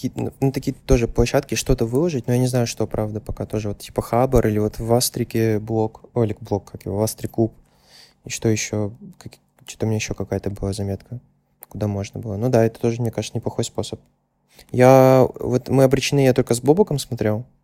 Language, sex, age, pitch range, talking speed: Russian, male, 20-39, 110-130 Hz, 205 wpm